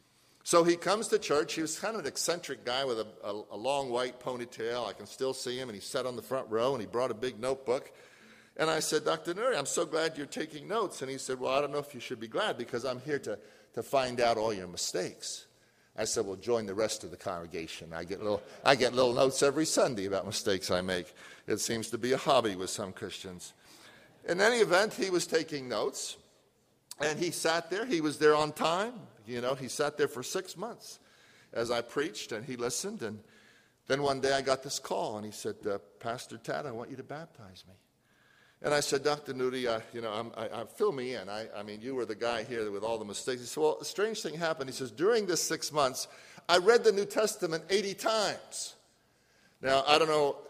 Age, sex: 50-69, male